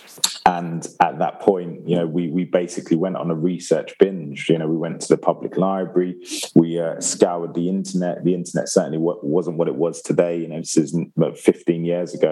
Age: 20-39